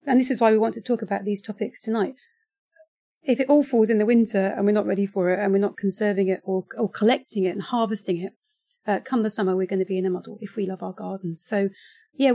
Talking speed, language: 265 wpm, English